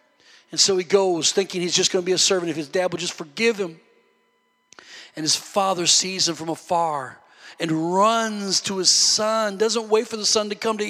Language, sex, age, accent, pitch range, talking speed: English, male, 40-59, American, 200-255 Hz, 215 wpm